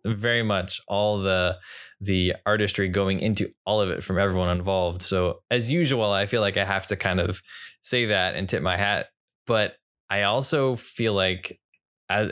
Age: 20-39